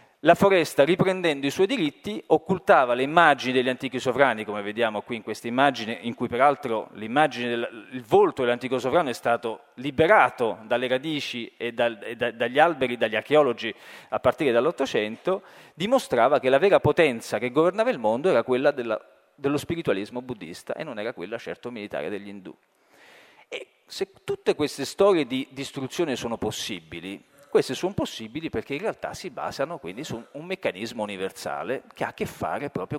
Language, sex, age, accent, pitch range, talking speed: Italian, male, 40-59, native, 120-180 Hz, 170 wpm